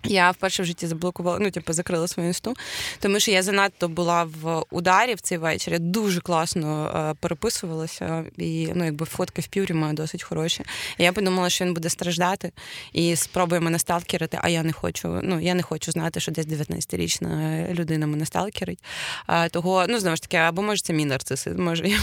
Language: Ukrainian